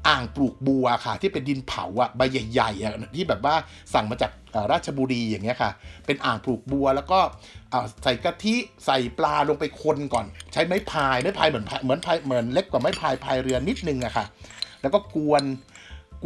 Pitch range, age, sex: 125-170 Hz, 60-79, male